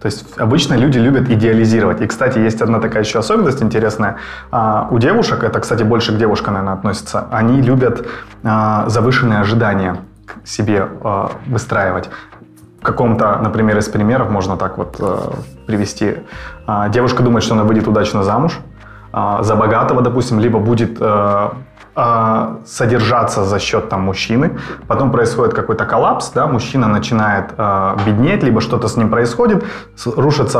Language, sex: Russian, male